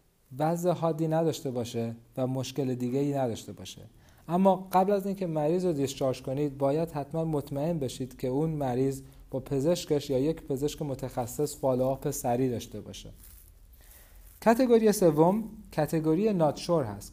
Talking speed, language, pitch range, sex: 145 wpm, Persian, 125-165 Hz, male